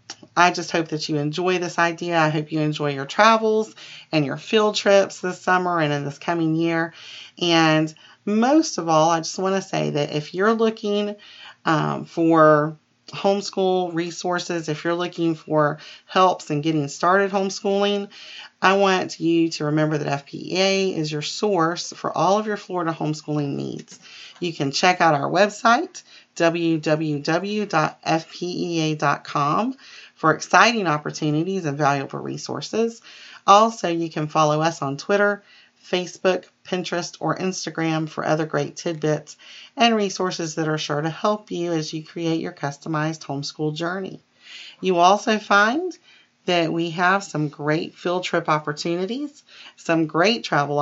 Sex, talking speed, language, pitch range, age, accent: female, 150 wpm, English, 155-190 Hz, 40-59, American